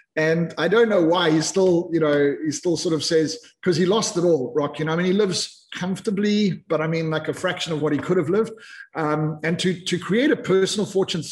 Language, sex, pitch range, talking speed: English, male, 145-180 Hz, 250 wpm